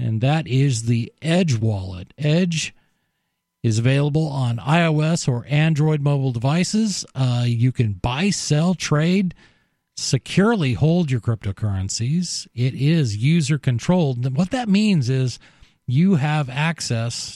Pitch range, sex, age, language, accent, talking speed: 110-150 Hz, male, 40-59, English, American, 125 wpm